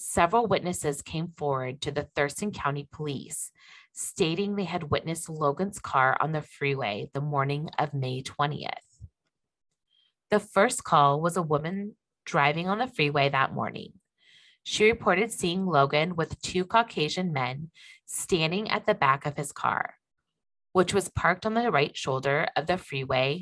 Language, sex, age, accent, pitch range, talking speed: English, female, 20-39, American, 140-185 Hz, 155 wpm